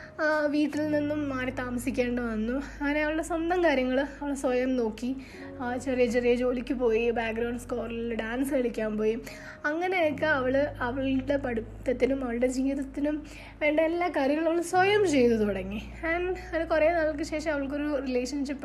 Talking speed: 130 wpm